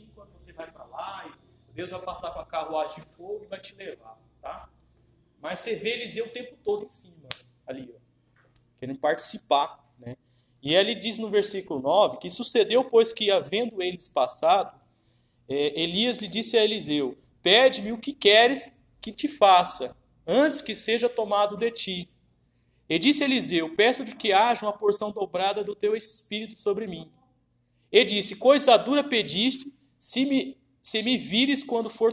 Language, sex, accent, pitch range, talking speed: Portuguese, male, Brazilian, 160-250 Hz, 165 wpm